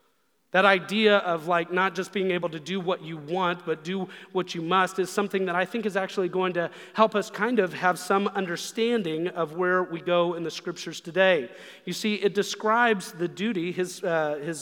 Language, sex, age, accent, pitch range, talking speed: English, male, 30-49, American, 170-195 Hz, 210 wpm